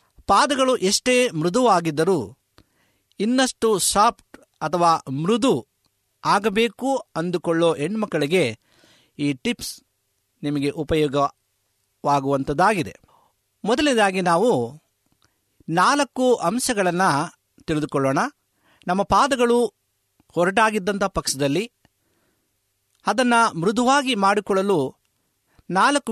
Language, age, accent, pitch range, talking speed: Kannada, 50-69, native, 145-220 Hz, 60 wpm